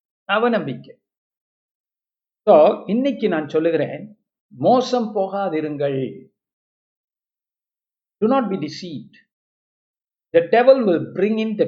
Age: 50-69